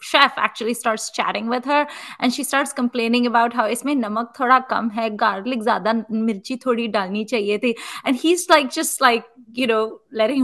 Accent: Indian